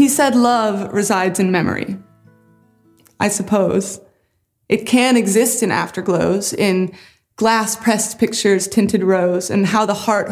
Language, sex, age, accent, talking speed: English, female, 20-39, American, 130 wpm